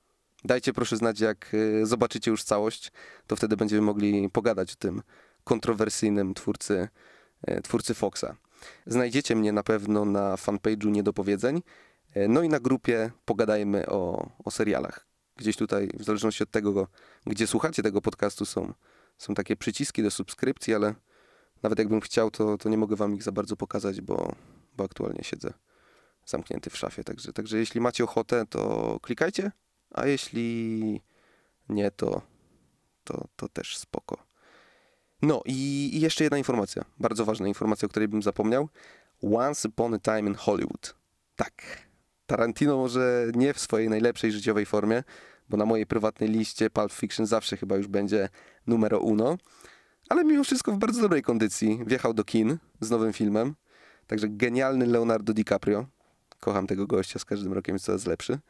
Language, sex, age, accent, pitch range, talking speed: Polish, male, 30-49, native, 105-120 Hz, 155 wpm